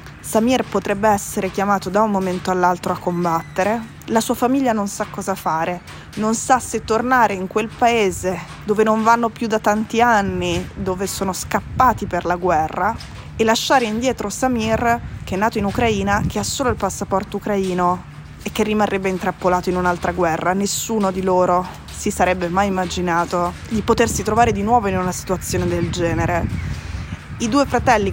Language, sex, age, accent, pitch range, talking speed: Italian, female, 20-39, native, 180-220 Hz, 170 wpm